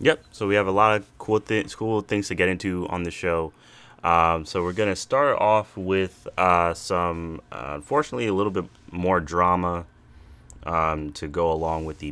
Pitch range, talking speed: 80-100 Hz, 200 wpm